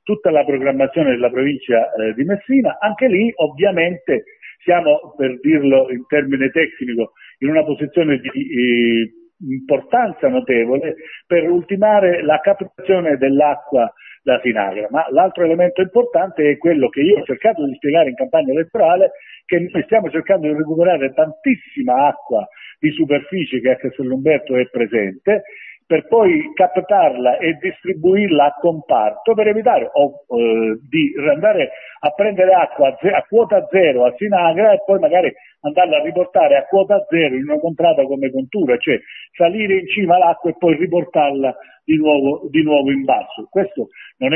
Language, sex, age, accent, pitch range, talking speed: Italian, male, 50-69, native, 135-190 Hz, 150 wpm